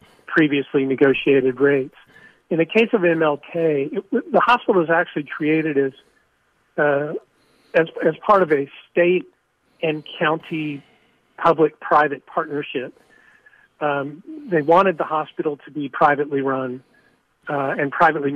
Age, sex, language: 40-59, male, English